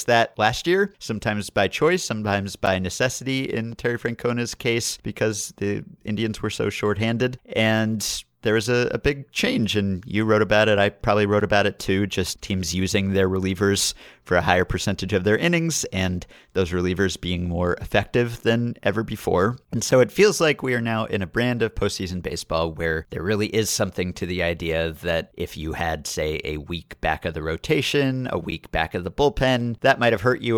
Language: English